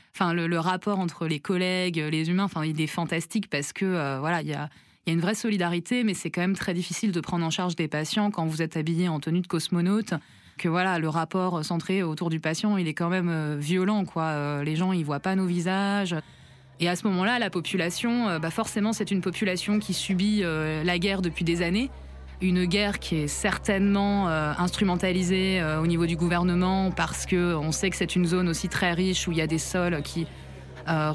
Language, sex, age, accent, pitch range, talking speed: French, female, 20-39, French, 165-190 Hz, 220 wpm